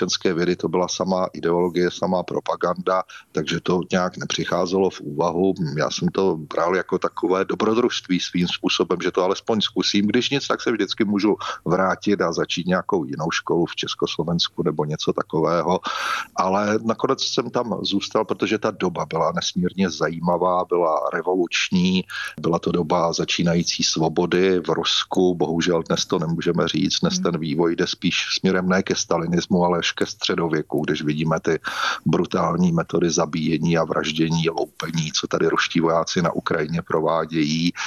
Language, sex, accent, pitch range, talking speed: Czech, male, native, 85-95 Hz, 150 wpm